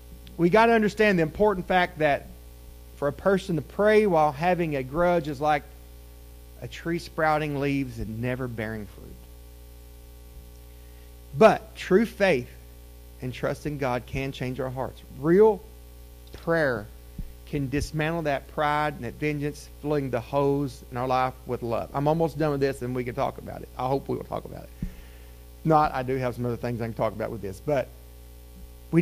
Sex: male